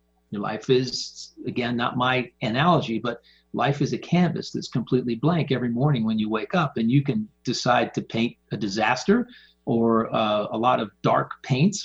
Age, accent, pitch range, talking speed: 50-69, American, 115-165 Hz, 180 wpm